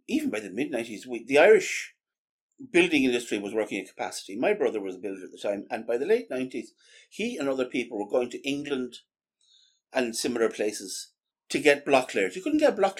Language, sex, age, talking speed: English, male, 50-69, 210 wpm